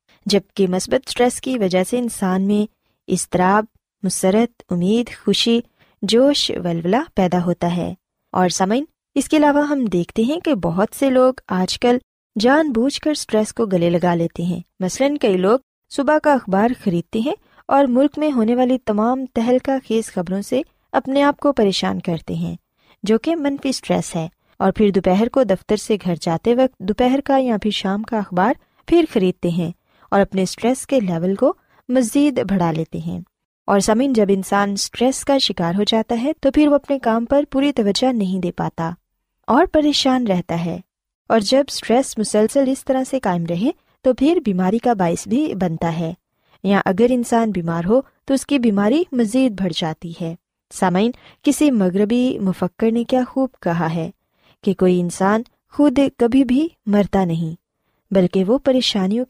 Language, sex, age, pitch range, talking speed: Urdu, female, 20-39, 185-265 Hz, 175 wpm